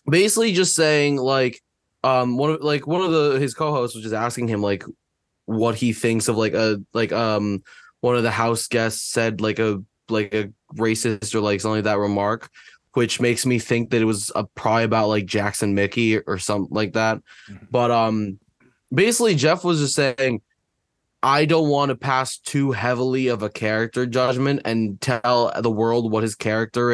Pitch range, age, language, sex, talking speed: 110-135 Hz, 20-39, English, male, 190 wpm